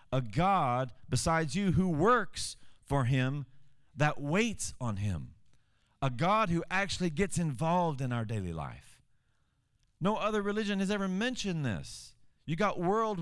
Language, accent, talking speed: English, American, 145 wpm